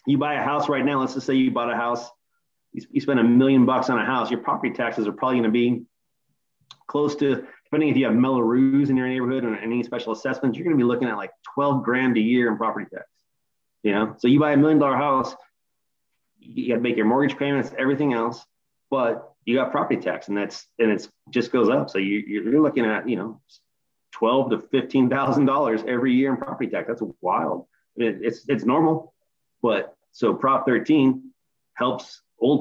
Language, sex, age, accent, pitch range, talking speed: English, male, 30-49, American, 110-135 Hz, 205 wpm